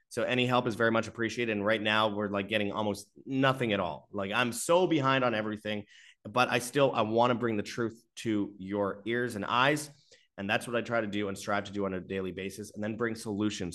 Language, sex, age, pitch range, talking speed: English, male, 30-49, 105-140 Hz, 240 wpm